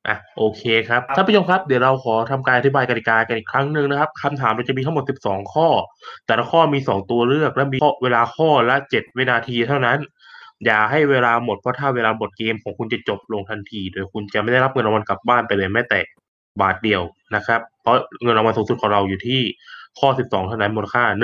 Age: 20-39